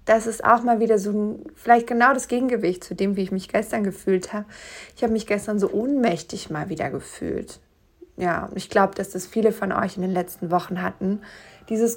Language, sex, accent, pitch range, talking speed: German, female, German, 195-235 Hz, 205 wpm